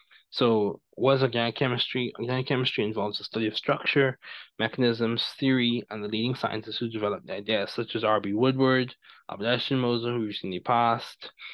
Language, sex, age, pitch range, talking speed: English, male, 20-39, 105-125 Hz, 170 wpm